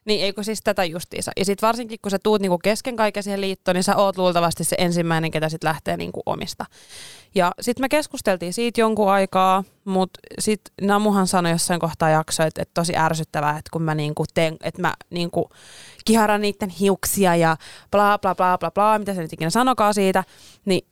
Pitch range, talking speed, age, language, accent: 170-215 Hz, 190 wpm, 20-39, Finnish, native